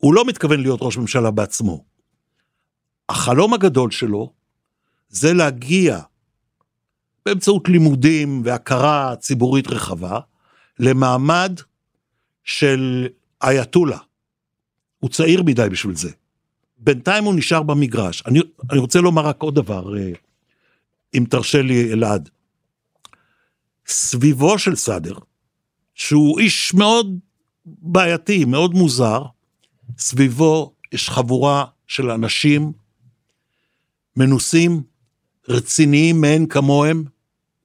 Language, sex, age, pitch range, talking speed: Hebrew, male, 60-79, 125-160 Hz, 90 wpm